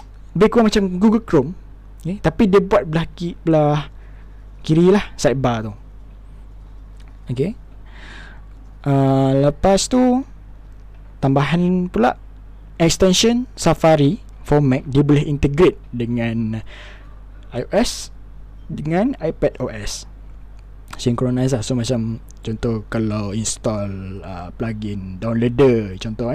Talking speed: 100 wpm